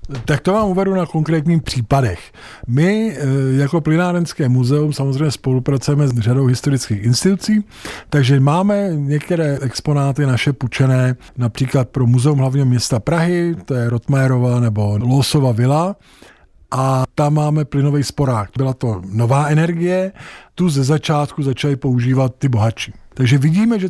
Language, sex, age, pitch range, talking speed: Czech, male, 50-69, 130-165 Hz, 135 wpm